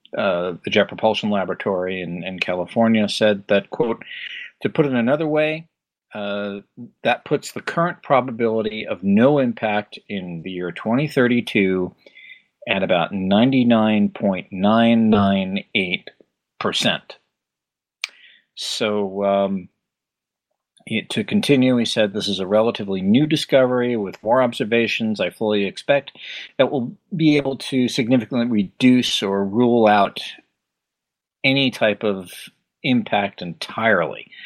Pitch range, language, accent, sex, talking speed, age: 100-130 Hz, English, American, male, 115 wpm, 40-59